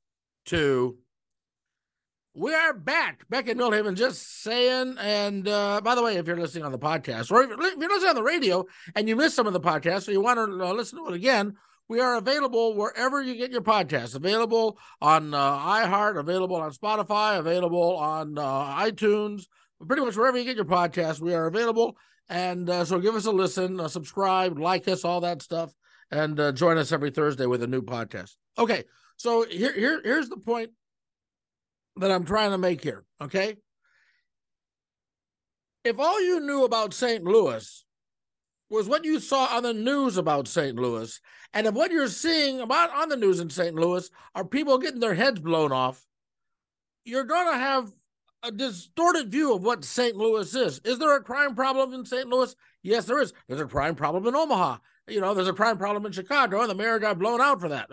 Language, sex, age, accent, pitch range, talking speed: English, male, 50-69, American, 175-255 Hz, 200 wpm